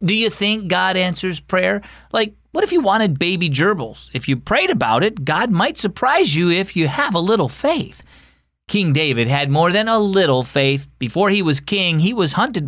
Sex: male